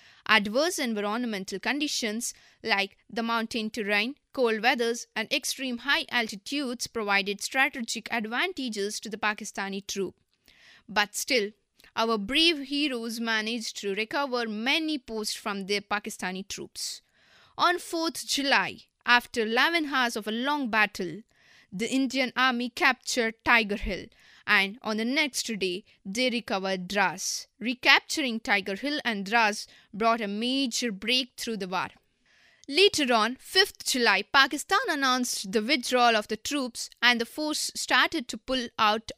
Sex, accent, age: female, native, 20-39